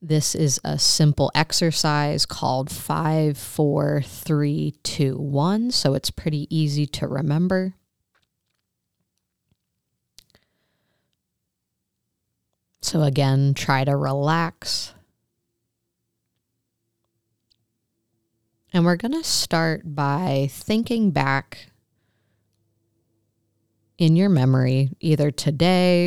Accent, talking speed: American, 70 wpm